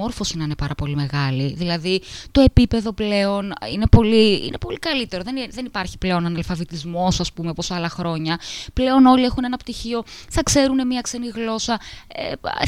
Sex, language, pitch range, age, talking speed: female, Greek, 170-240 Hz, 20-39, 175 wpm